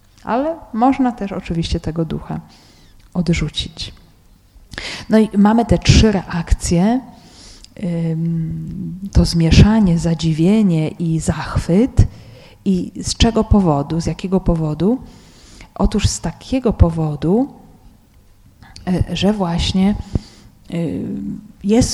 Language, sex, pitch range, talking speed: Polish, female, 165-210 Hz, 90 wpm